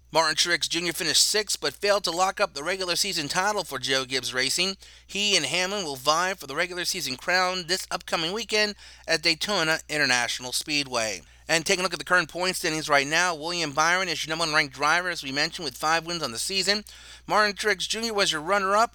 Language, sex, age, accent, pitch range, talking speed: English, male, 30-49, American, 145-195 Hz, 220 wpm